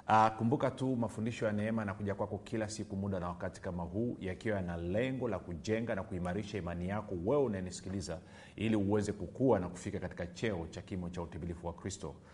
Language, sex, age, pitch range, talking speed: Swahili, male, 40-59, 90-110 Hz, 195 wpm